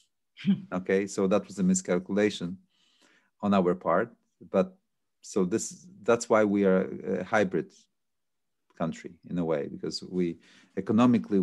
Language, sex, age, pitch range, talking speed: English, male, 40-59, 90-105 Hz, 130 wpm